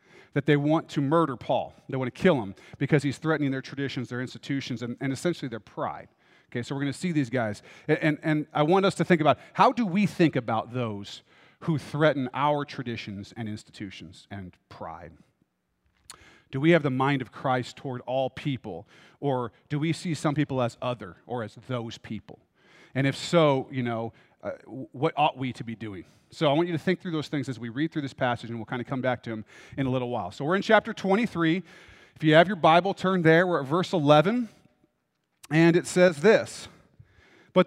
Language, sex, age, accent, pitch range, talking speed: English, male, 40-59, American, 125-170 Hz, 215 wpm